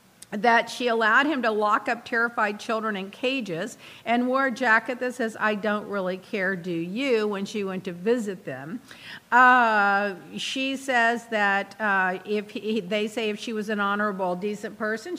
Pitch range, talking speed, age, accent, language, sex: 185-230 Hz, 175 wpm, 50-69, American, English, female